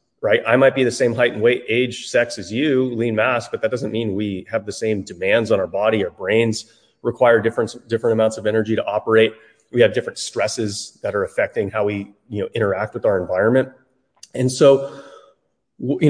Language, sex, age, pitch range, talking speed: English, male, 30-49, 110-130 Hz, 205 wpm